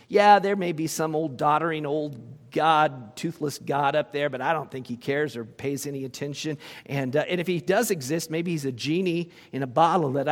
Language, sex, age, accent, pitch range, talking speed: English, male, 50-69, American, 150-195 Hz, 220 wpm